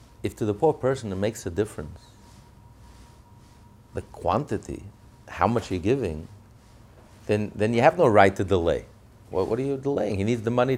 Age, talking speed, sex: 40-59, 180 wpm, male